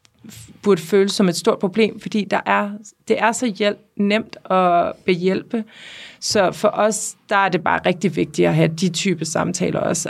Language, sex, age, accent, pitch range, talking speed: Danish, female, 30-49, native, 165-200 Hz, 180 wpm